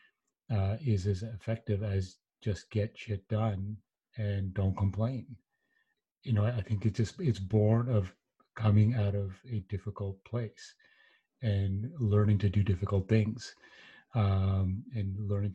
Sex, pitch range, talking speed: male, 100-115 Hz, 145 wpm